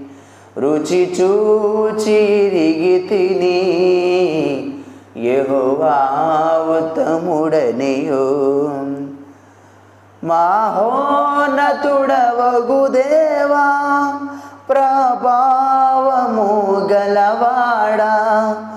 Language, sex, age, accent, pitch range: Telugu, male, 30-49, native, 150-240 Hz